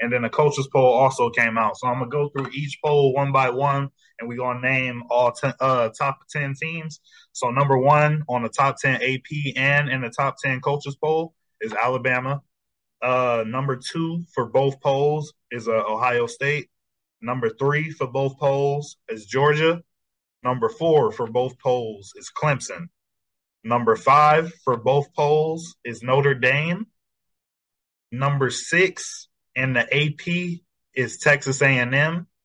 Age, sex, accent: 20-39, male, American